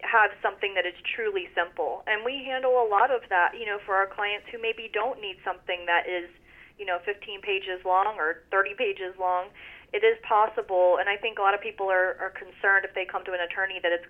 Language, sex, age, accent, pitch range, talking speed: English, female, 30-49, American, 185-245 Hz, 235 wpm